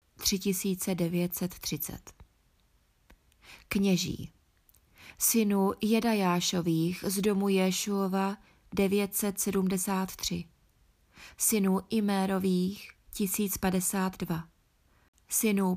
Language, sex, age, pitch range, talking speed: Czech, female, 20-39, 175-195 Hz, 45 wpm